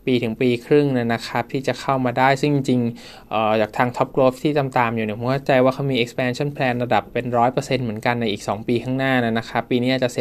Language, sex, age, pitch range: Thai, male, 20-39, 115-135 Hz